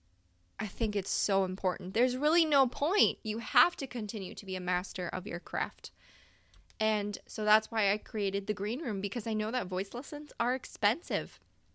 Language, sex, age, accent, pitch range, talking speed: English, female, 20-39, American, 190-235 Hz, 190 wpm